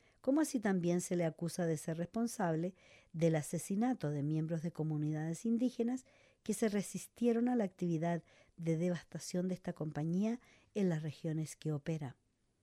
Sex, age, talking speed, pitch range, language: female, 50-69, 150 wpm, 165-195 Hz, English